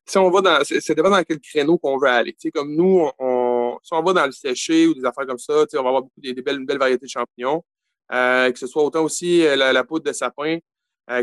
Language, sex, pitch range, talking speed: French, male, 135-160 Hz, 300 wpm